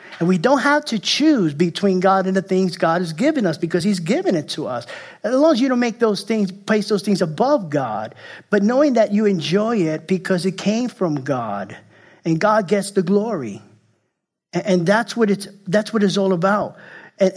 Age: 50-69